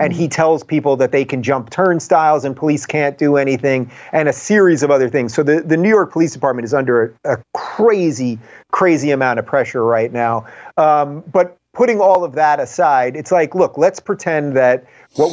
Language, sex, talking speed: English, male, 205 wpm